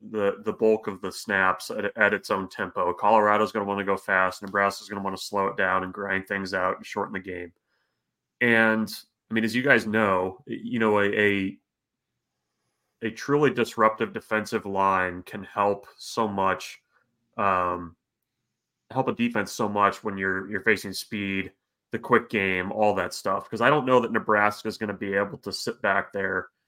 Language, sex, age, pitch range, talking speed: English, male, 30-49, 100-110 Hz, 195 wpm